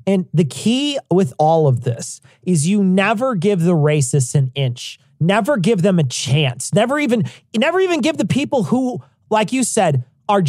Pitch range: 130-195 Hz